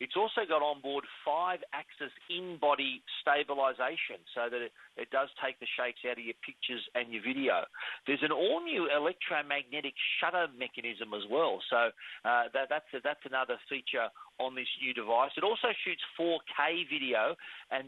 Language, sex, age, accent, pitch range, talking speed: English, male, 40-59, Australian, 125-150 Hz, 160 wpm